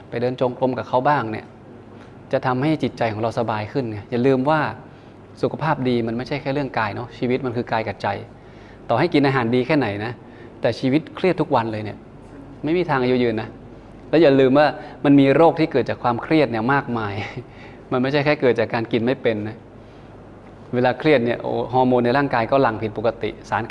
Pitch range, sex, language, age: 115-135 Hz, male, Thai, 20-39